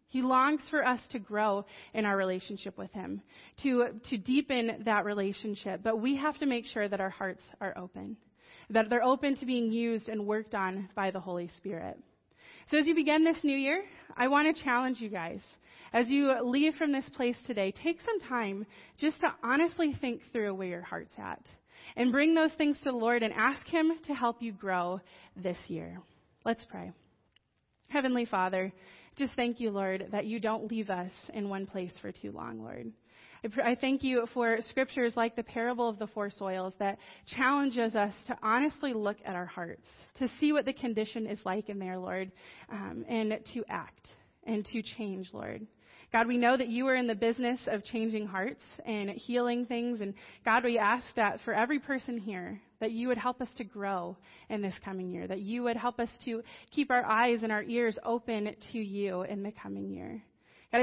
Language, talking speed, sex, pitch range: English, 200 wpm, female, 200-250 Hz